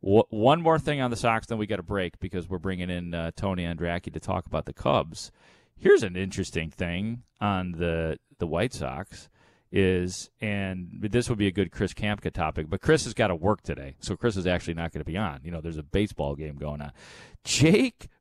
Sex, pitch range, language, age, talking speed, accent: male, 90-120 Hz, English, 40-59, 220 wpm, American